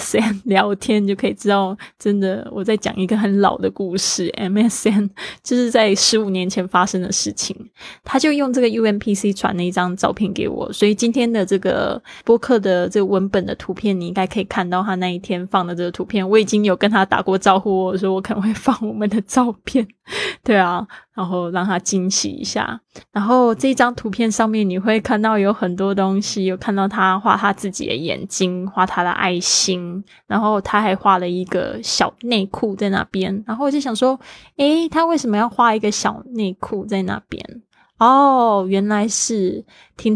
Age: 20-39